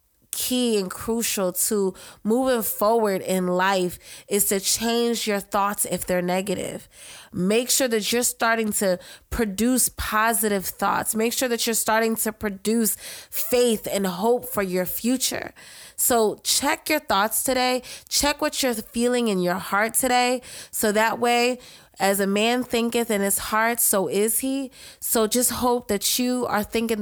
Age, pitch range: 20-39, 200-260 Hz